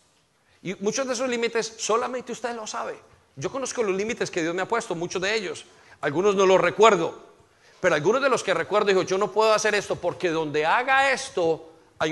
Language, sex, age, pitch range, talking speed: Spanish, male, 40-59, 175-235 Hz, 210 wpm